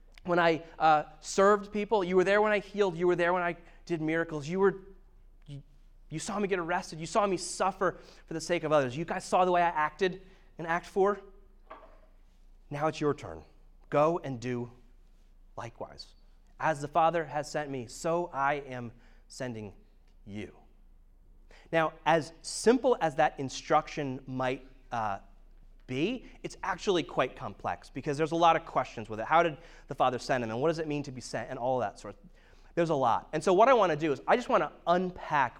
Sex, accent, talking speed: male, American, 205 wpm